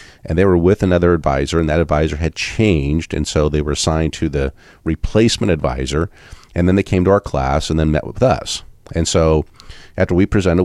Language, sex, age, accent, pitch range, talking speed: English, male, 40-59, American, 75-90 Hz, 210 wpm